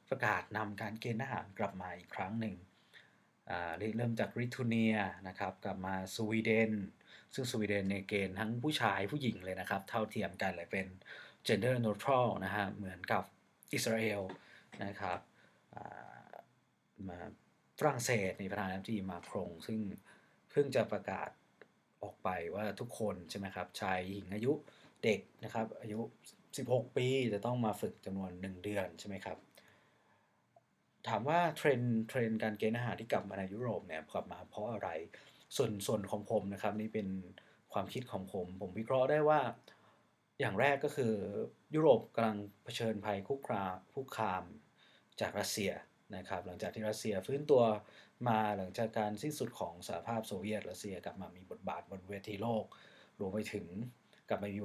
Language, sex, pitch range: Thai, male, 95-115 Hz